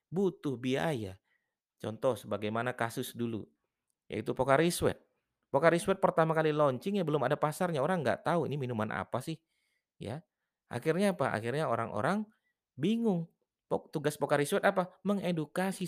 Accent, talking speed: native, 125 wpm